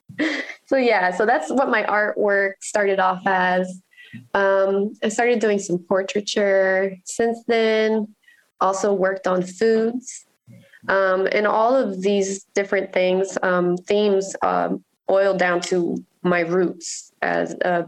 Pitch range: 180-220 Hz